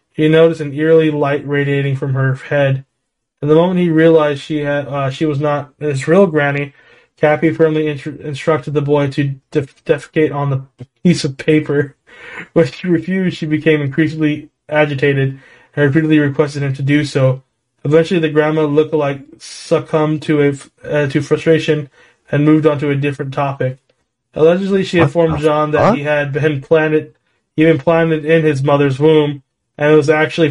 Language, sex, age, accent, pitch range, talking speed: English, male, 20-39, American, 140-155 Hz, 175 wpm